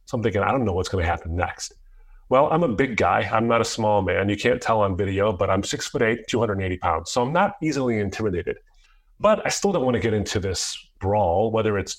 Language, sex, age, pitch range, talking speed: English, male, 30-49, 100-130 Hz, 250 wpm